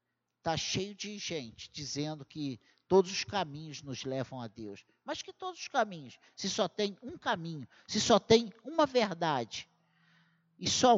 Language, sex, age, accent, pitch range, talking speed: Portuguese, male, 50-69, Brazilian, 150-235 Hz, 165 wpm